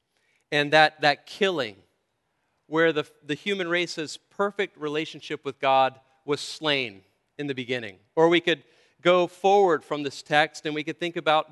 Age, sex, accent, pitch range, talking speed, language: 40-59, male, American, 130-160 Hz, 160 wpm, English